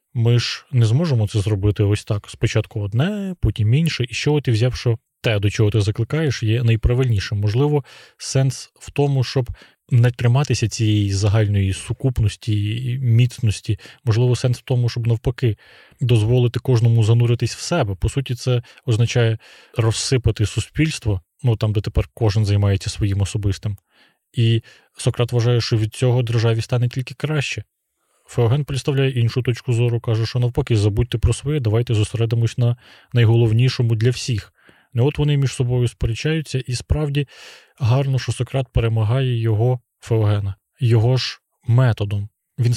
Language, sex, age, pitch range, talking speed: Ukrainian, male, 20-39, 110-125 Hz, 145 wpm